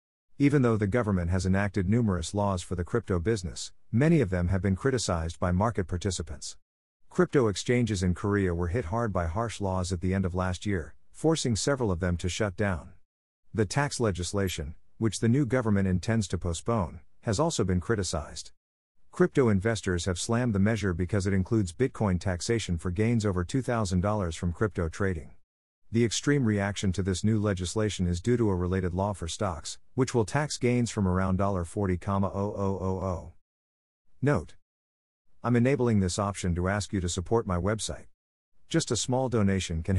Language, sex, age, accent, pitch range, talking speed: English, male, 50-69, American, 90-115 Hz, 175 wpm